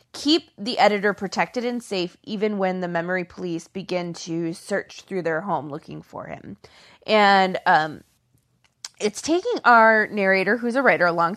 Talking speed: 165 wpm